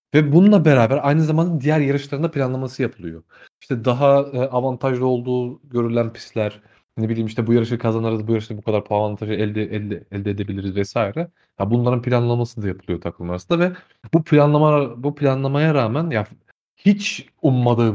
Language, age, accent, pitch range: Turkish, 30-49, native, 110-150 Hz